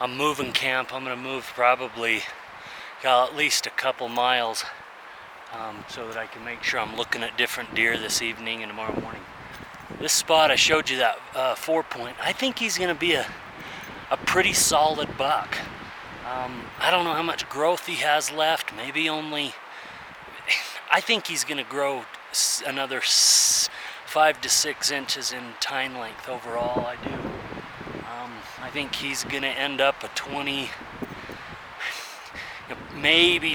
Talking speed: 150 wpm